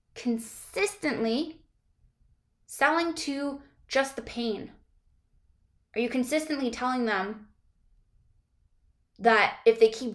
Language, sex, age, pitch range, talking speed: English, female, 10-29, 210-245 Hz, 90 wpm